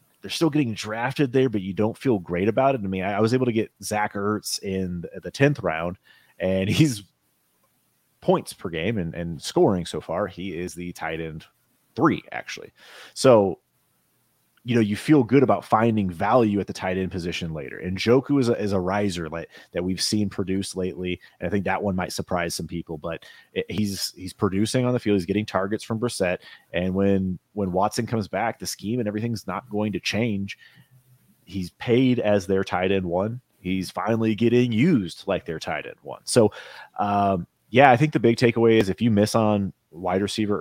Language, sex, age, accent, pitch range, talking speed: English, male, 30-49, American, 90-115 Hz, 205 wpm